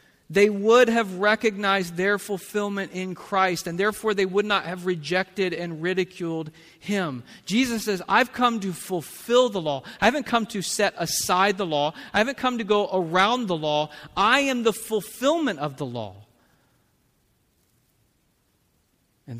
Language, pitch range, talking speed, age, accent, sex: English, 120-185 Hz, 155 wpm, 40-59, American, male